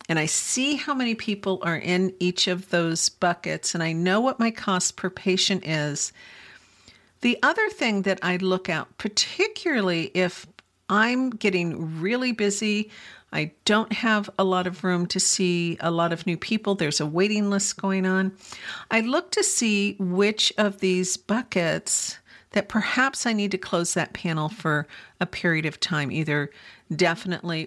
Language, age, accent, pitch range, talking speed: English, 50-69, American, 170-210 Hz, 165 wpm